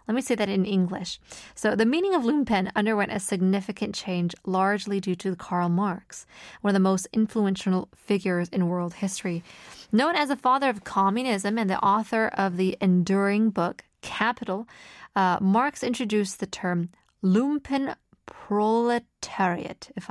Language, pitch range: Korean, 190-265 Hz